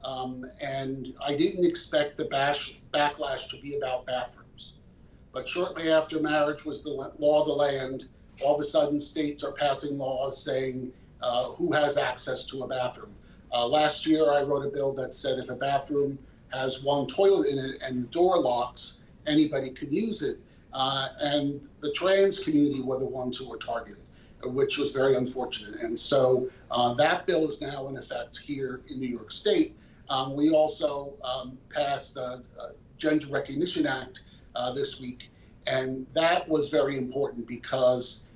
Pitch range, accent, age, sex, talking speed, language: 130-150 Hz, American, 50-69, male, 170 wpm, English